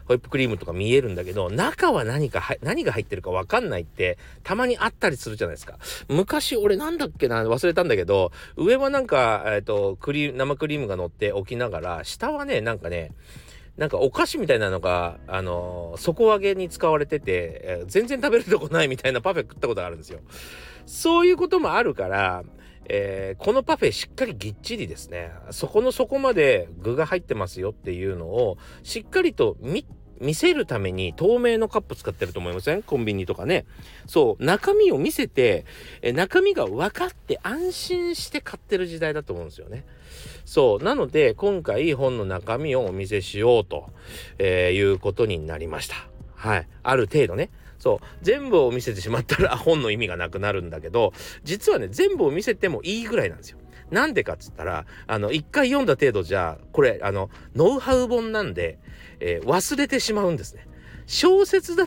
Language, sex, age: Japanese, male, 40-59